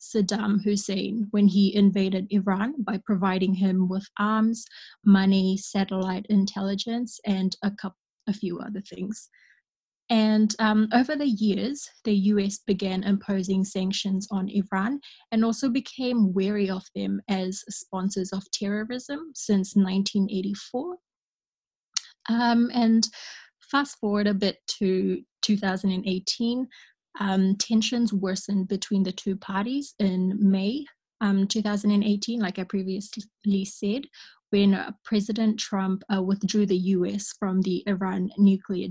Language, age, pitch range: English, 20-39, 195-215 Hz